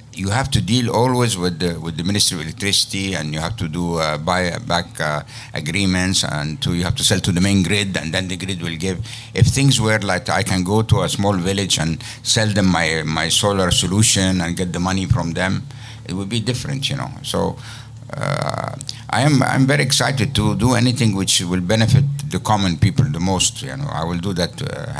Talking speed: 225 wpm